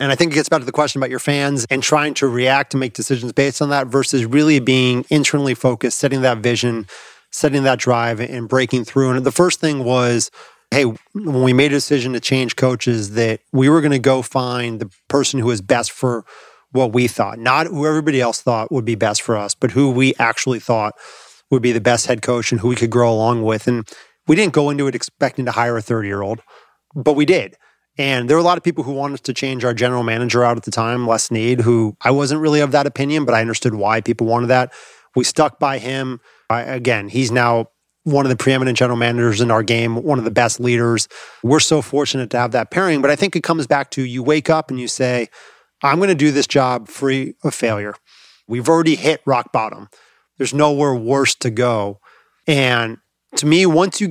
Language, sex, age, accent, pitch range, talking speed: English, male, 30-49, American, 120-145 Hz, 230 wpm